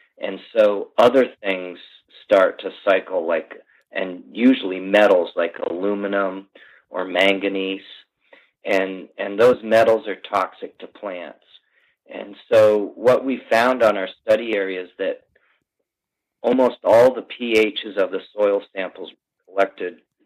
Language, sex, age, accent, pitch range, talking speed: English, male, 40-59, American, 95-120 Hz, 125 wpm